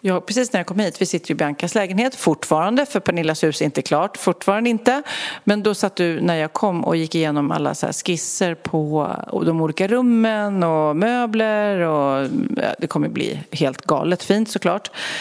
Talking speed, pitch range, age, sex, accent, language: 190 wpm, 165-220 Hz, 40-59, female, native, Swedish